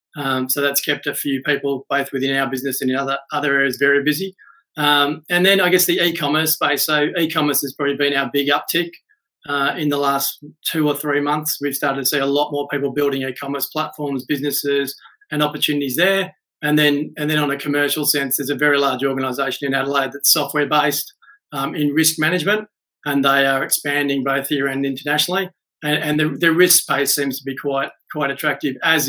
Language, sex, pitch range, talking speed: English, male, 140-150 Hz, 210 wpm